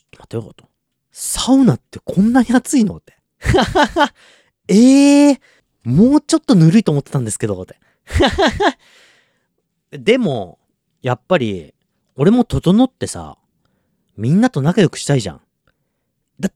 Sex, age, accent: male, 40-59, native